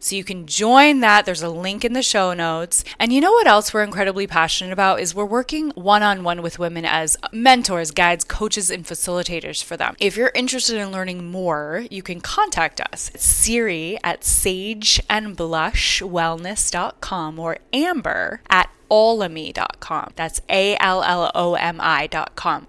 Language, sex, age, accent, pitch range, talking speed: English, female, 20-39, American, 165-205 Hz, 145 wpm